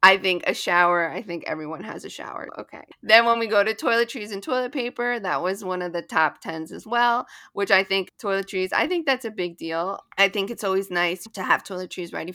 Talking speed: 235 wpm